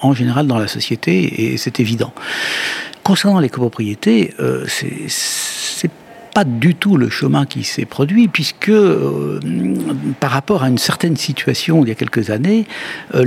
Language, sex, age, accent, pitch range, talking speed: French, male, 60-79, French, 120-175 Hz, 165 wpm